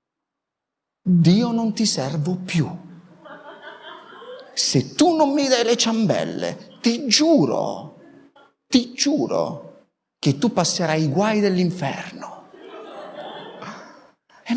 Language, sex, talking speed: Italian, male, 95 wpm